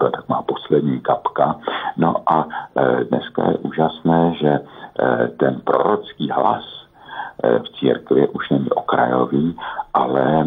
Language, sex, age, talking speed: Slovak, male, 60-79, 125 wpm